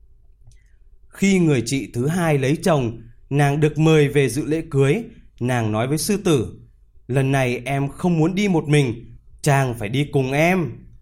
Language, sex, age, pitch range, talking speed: Vietnamese, male, 20-39, 115-170 Hz, 175 wpm